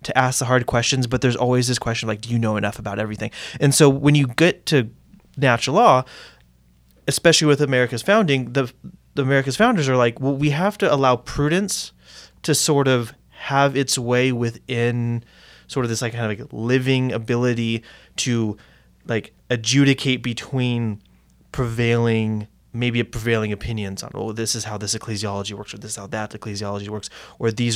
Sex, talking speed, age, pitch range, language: male, 180 wpm, 20-39, 110-130 Hz, English